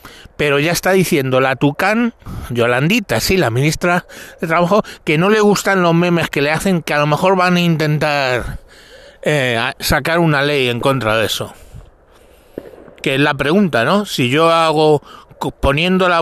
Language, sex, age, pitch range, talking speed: Spanish, male, 60-79, 120-165 Hz, 170 wpm